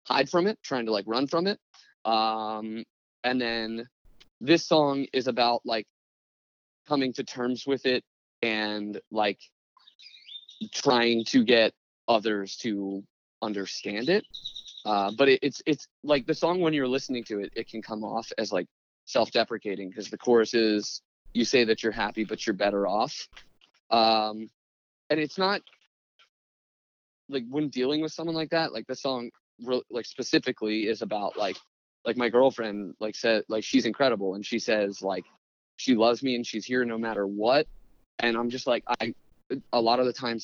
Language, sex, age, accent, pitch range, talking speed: English, male, 20-39, American, 105-135 Hz, 170 wpm